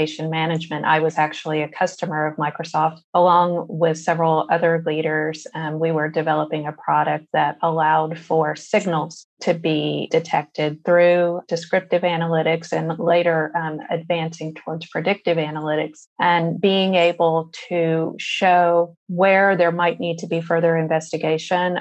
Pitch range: 155-175 Hz